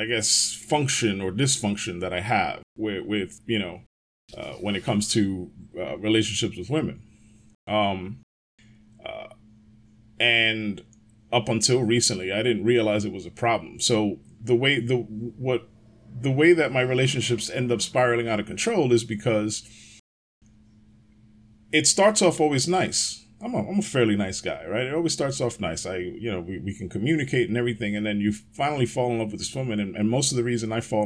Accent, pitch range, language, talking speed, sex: American, 105-120 Hz, English, 185 wpm, male